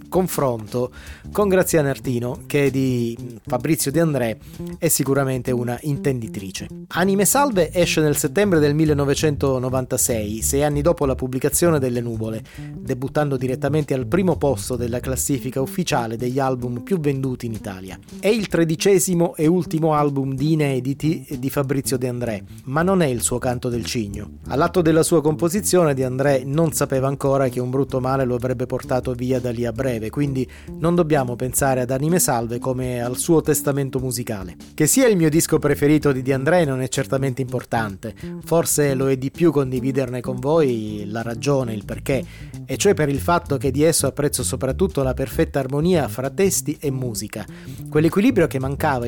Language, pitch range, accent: Italian, 125-155 Hz, native